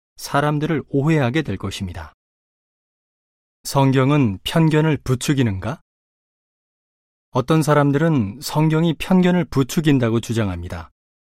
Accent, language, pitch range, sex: native, Korean, 105-150 Hz, male